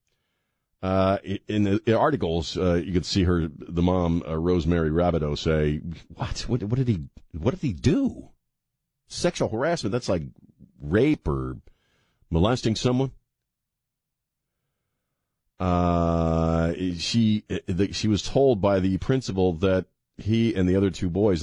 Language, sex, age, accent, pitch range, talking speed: English, male, 40-59, American, 85-115 Hz, 135 wpm